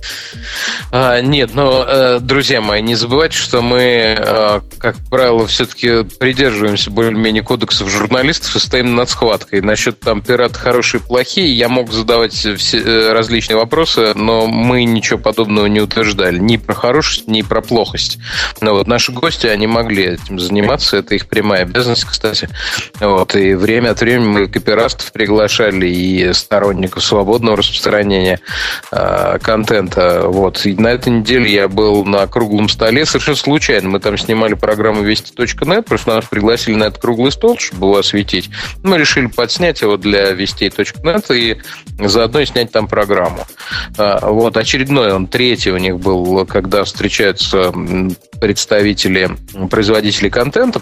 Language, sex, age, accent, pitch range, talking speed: Russian, male, 20-39, native, 105-125 Hz, 145 wpm